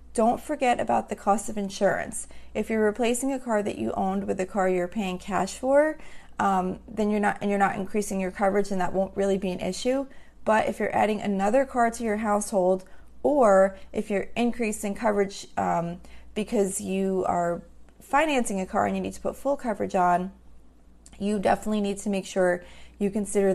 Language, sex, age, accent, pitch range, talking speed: English, female, 30-49, American, 180-220 Hz, 190 wpm